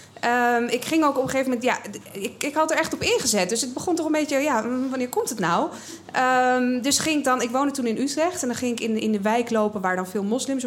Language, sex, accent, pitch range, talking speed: Dutch, female, Dutch, 180-255 Hz, 260 wpm